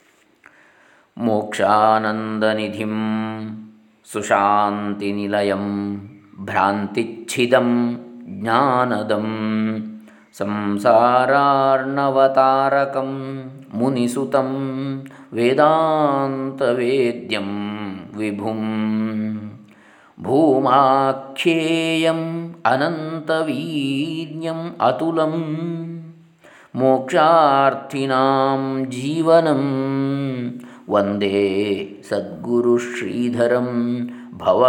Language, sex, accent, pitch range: Kannada, male, native, 110-135 Hz